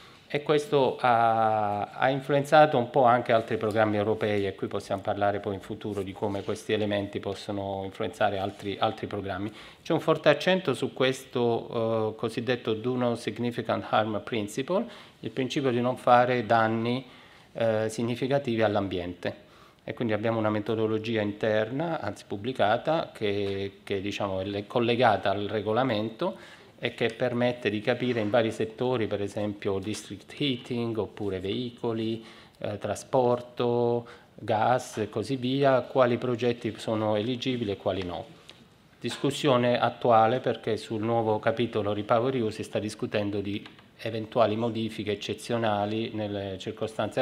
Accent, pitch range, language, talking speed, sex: native, 105-125 Hz, Italian, 135 wpm, male